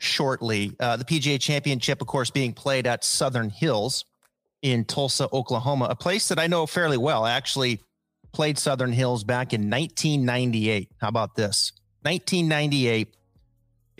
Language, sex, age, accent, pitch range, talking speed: English, male, 30-49, American, 115-140 Hz, 145 wpm